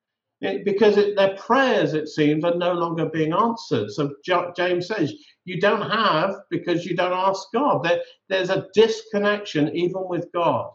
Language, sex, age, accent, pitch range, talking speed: English, male, 50-69, British, 155-210 Hz, 165 wpm